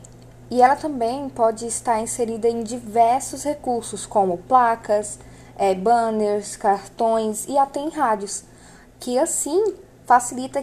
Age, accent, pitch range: 10-29, Brazilian, 210-265 Hz